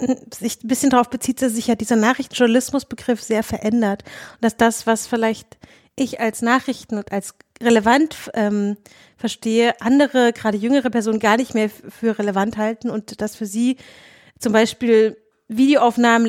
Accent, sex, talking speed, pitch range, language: German, female, 155 wpm, 220-255 Hz, German